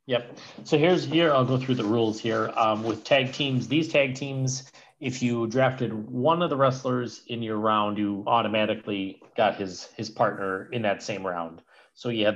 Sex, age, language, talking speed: male, 40-59, English, 195 wpm